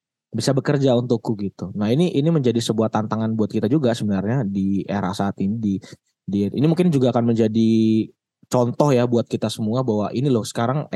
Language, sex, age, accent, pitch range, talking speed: Indonesian, male, 20-39, native, 110-125 Hz, 185 wpm